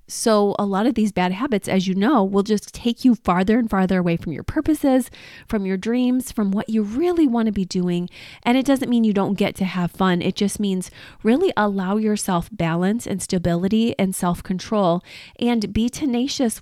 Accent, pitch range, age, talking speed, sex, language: American, 185-235 Hz, 30-49, 200 wpm, female, English